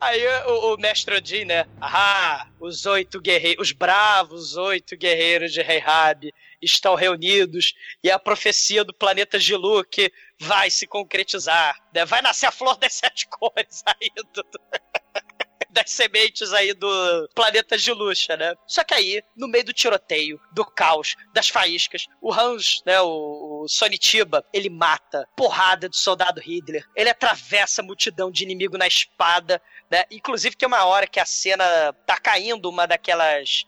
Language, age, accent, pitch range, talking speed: Portuguese, 20-39, Brazilian, 170-220 Hz, 155 wpm